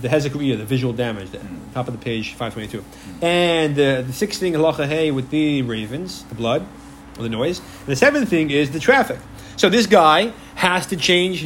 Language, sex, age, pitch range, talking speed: English, male, 30-49, 130-190 Hz, 200 wpm